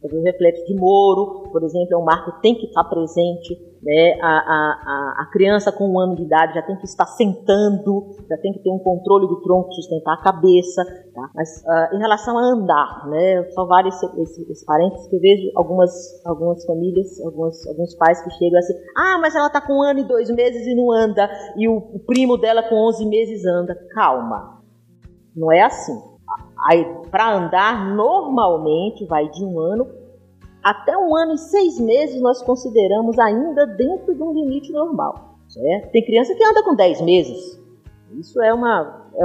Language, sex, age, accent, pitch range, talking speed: Portuguese, female, 40-59, Brazilian, 170-225 Hz, 195 wpm